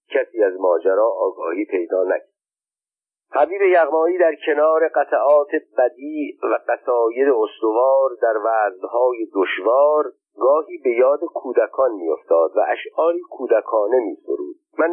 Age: 50-69